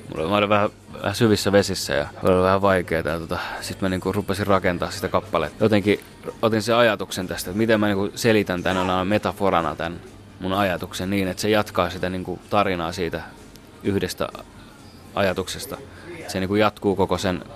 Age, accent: 20-39, native